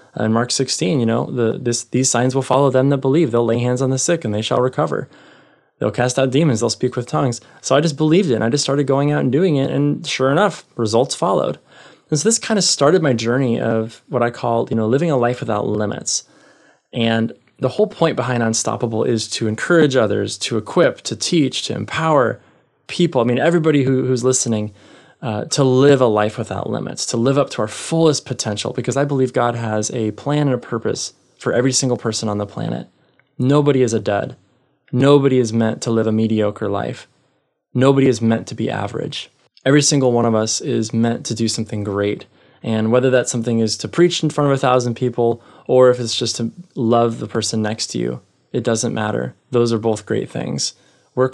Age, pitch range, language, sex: 20-39, 115-135 Hz, English, male